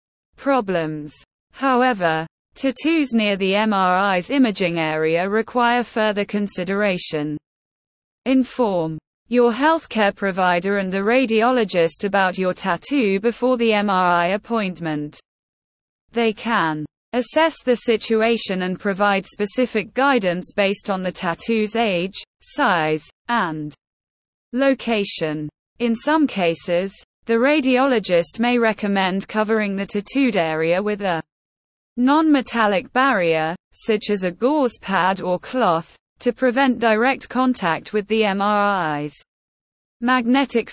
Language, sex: English, female